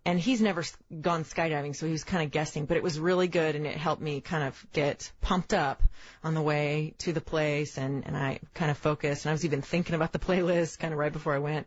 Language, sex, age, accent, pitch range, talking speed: English, female, 30-49, American, 150-170 Hz, 260 wpm